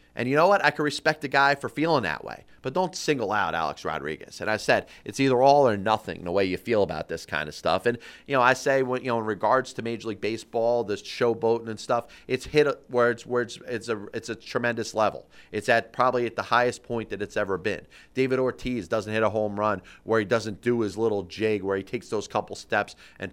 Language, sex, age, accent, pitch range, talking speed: English, male, 30-49, American, 105-130 Hz, 250 wpm